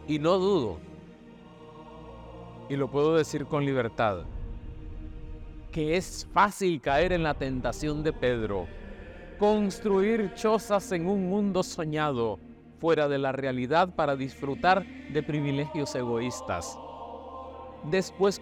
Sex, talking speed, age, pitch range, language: male, 110 wpm, 50-69, 145-210 Hz, Spanish